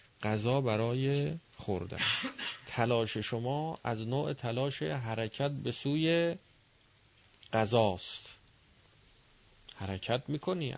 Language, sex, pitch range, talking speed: Persian, male, 110-135 Hz, 80 wpm